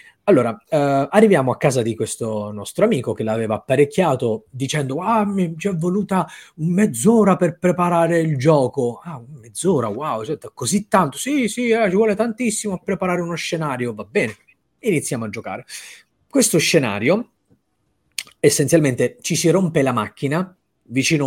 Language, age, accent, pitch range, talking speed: Italian, 30-49, native, 115-185 Hz, 150 wpm